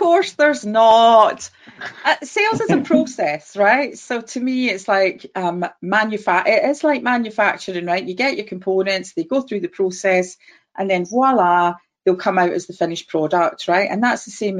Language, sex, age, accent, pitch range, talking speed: English, female, 30-49, British, 180-225 Hz, 185 wpm